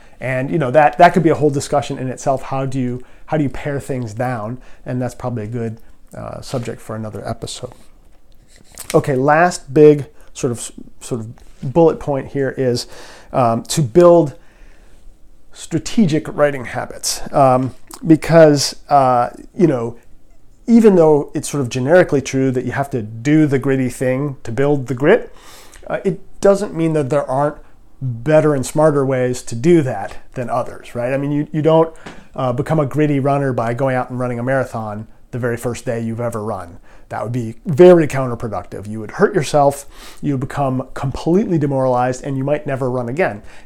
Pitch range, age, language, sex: 125-155 Hz, 40-59, English, male